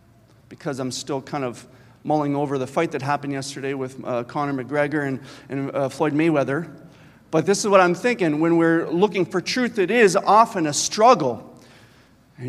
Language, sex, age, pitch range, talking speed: English, male, 40-59, 145-215 Hz, 185 wpm